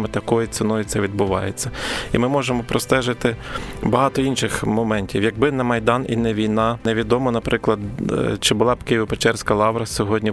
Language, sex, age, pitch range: Ukrainian, male, 20-39, 105-120 Hz